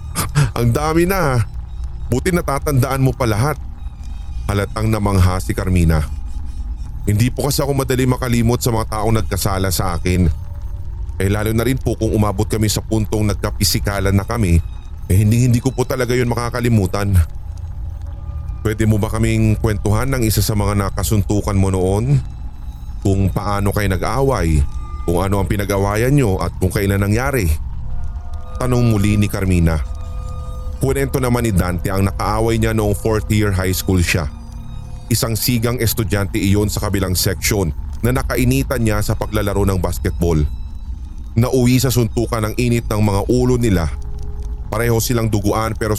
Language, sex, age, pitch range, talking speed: Filipino, male, 30-49, 85-115 Hz, 145 wpm